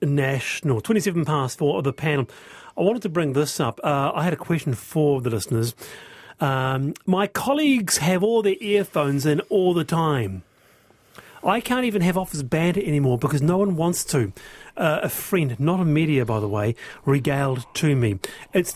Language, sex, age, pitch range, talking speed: English, male, 40-59, 140-195 Hz, 180 wpm